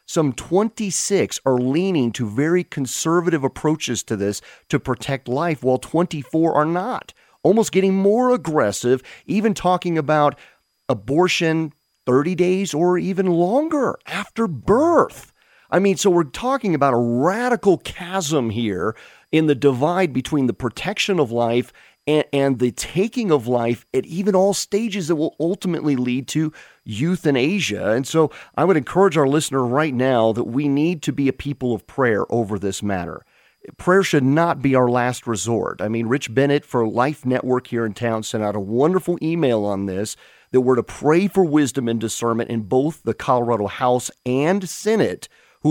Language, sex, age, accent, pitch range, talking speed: English, male, 40-59, American, 125-175 Hz, 170 wpm